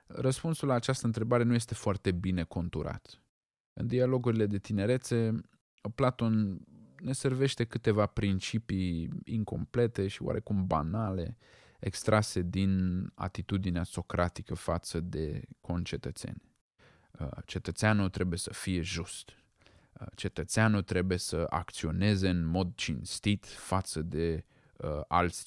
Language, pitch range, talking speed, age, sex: Romanian, 90-120 Hz, 105 wpm, 20-39, male